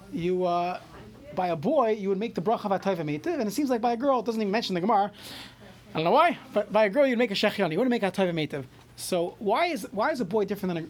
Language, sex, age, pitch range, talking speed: English, male, 30-49, 180-235 Hz, 280 wpm